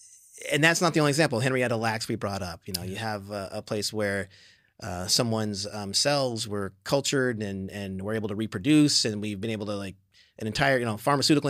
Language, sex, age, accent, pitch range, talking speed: English, male, 30-49, American, 105-125 Hz, 220 wpm